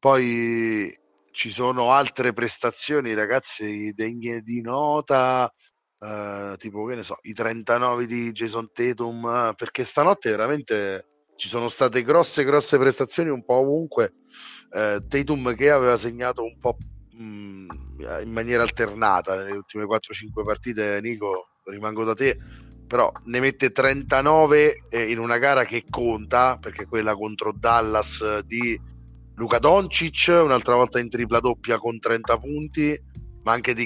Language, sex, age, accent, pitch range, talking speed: Italian, male, 30-49, native, 105-130 Hz, 135 wpm